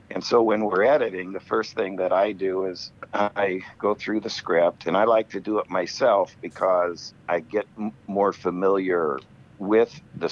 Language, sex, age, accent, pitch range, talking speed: English, male, 60-79, American, 85-105 Hz, 180 wpm